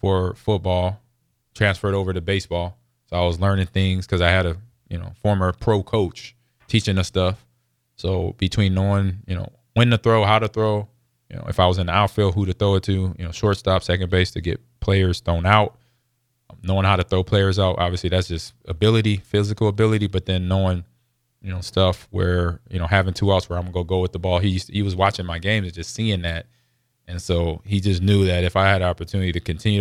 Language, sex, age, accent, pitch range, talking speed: English, male, 20-39, American, 90-110 Hz, 230 wpm